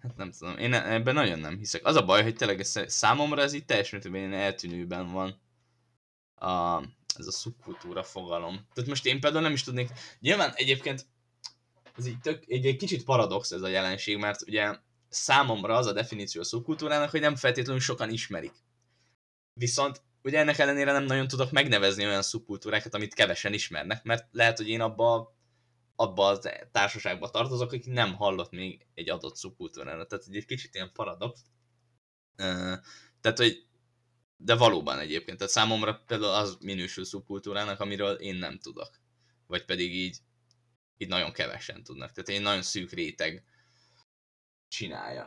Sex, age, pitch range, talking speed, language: male, 10-29, 95-125 Hz, 160 wpm, Hungarian